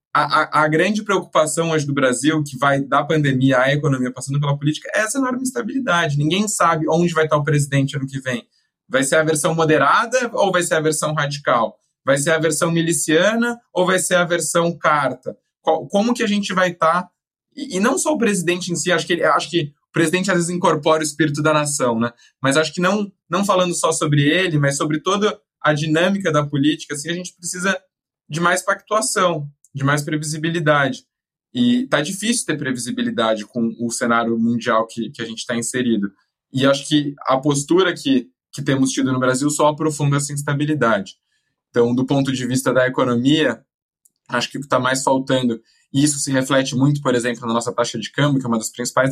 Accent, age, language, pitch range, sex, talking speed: Brazilian, 20-39, Portuguese, 135-175 Hz, male, 210 wpm